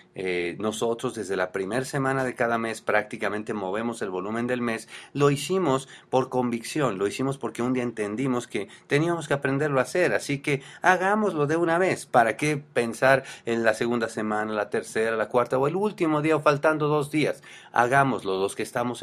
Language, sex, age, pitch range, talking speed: English, male, 40-59, 110-140 Hz, 190 wpm